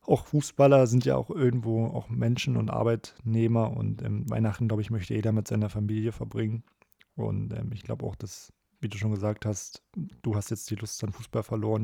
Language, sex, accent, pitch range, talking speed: German, male, German, 105-115 Hz, 205 wpm